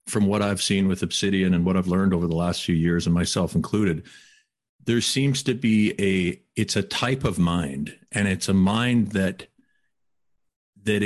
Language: English